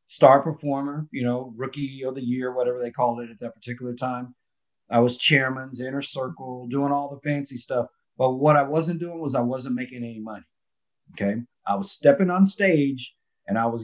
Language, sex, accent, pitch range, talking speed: English, male, American, 120-155 Hz, 200 wpm